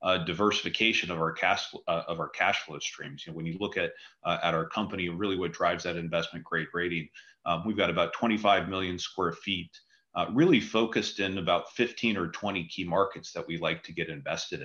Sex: male